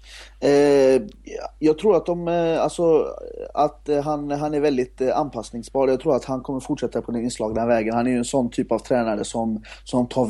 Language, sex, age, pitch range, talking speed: Swedish, male, 30-49, 115-140 Hz, 190 wpm